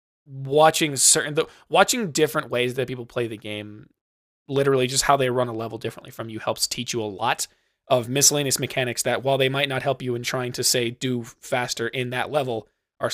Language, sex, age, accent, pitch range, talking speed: English, male, 20-39, American, 110-135 Hz, 205 wpm